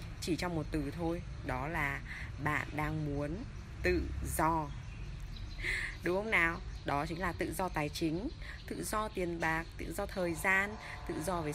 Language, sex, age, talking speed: Vietnamese, female, 20-39, 170 wpm